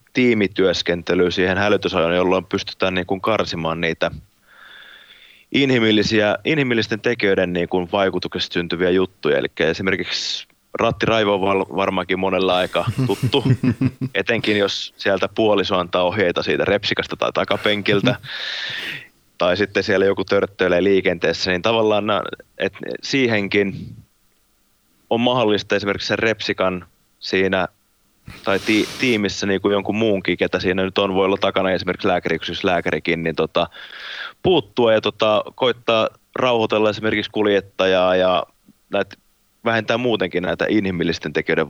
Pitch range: 90-105 Hz